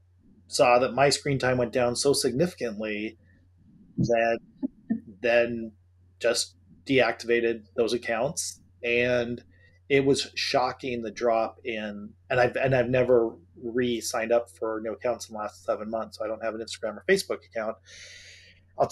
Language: English